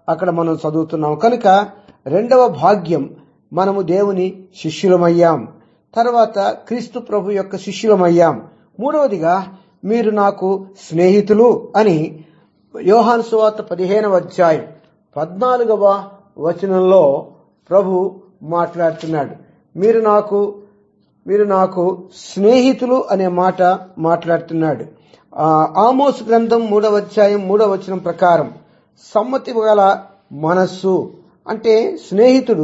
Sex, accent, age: male, Indian, 50-69